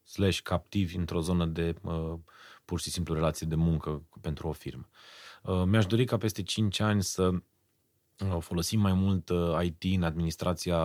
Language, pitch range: Romanian, 80-100 Hz